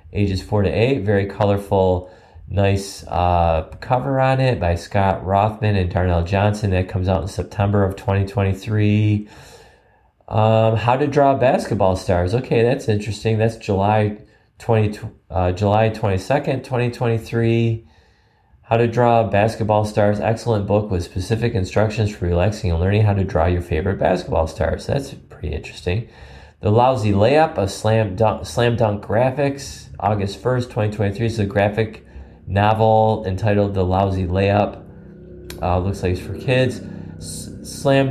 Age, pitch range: 30-49, 95-120 Hz